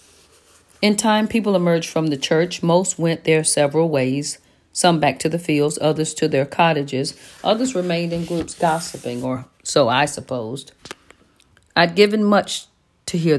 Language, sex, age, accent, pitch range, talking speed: English, female, 40-59, American, 145-190 Hz, 155 wpm